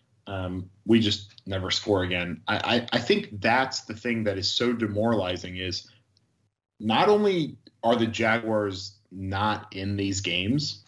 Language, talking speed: English, 150 wpm